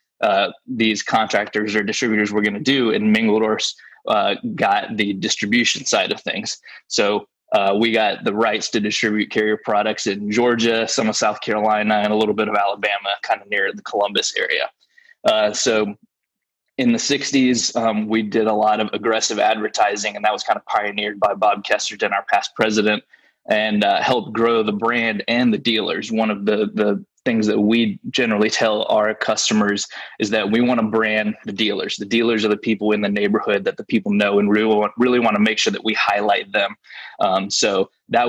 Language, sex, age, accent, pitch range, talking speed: English, male, 20-39, American, 105-115 Hz, 195 wpm